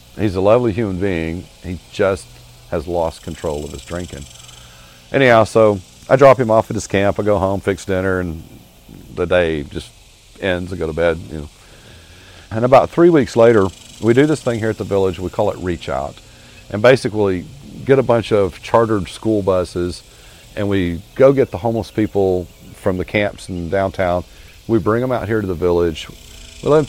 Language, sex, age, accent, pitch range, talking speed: English, male, 40-59, American, 85-105 Hz, 195 wpm